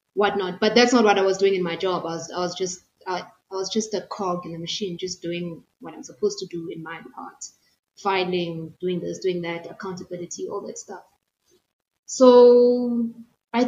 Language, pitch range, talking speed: English, 180-220 Hz, 200 wpm